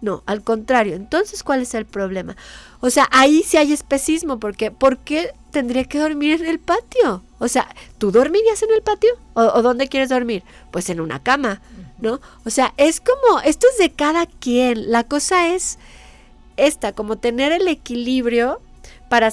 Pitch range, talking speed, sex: 230-295 Hz, 185 wpm, female